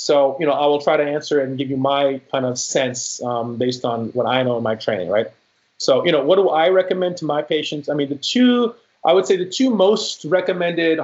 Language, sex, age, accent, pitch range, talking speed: English, male, 30-49, American, 135-170 Hz, 250 wpm